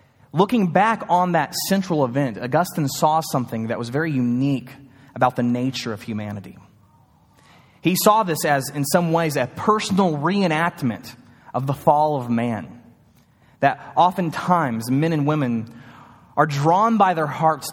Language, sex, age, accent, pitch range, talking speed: English, male, 20-39, American, 125-170 Hz, 145 wpm